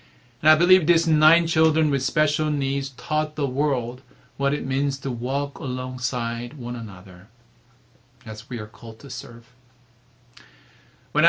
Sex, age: male, 40-59